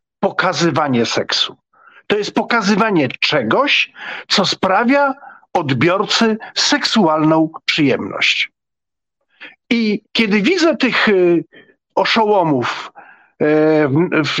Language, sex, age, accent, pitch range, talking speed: Polish, male, 50-69, native, 165-240 Hz, 70 wpm